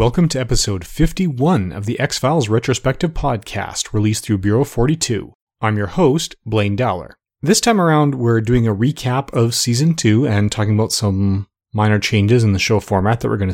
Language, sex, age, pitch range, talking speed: English, male, 30-49, 100-130 Hz, 180 wpm